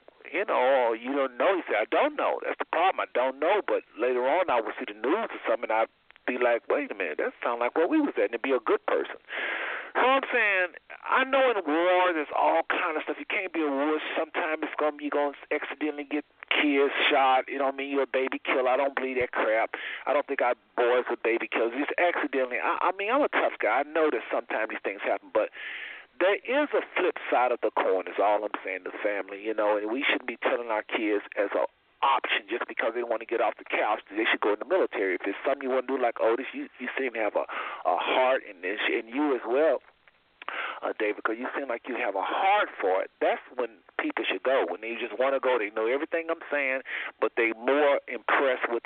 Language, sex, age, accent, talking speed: English, male, 40-59, American, 260 wpm